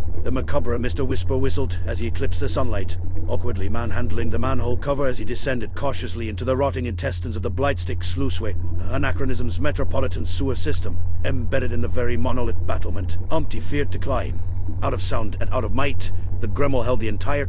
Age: 50-69